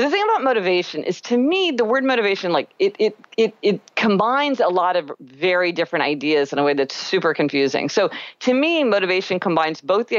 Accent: American